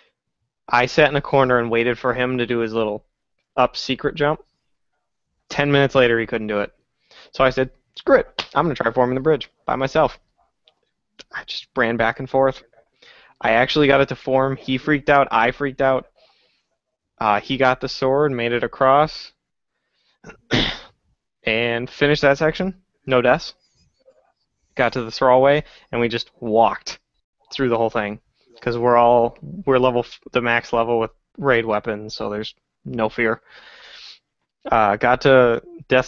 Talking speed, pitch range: 170 wpm, 115-135 Hz